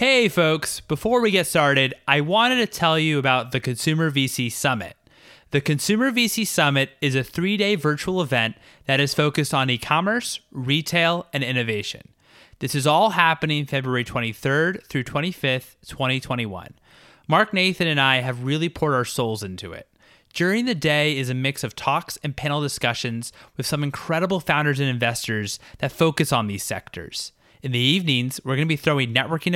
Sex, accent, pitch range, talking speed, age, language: male, American, 130-165 Hz, 170 wpm, 20-39, English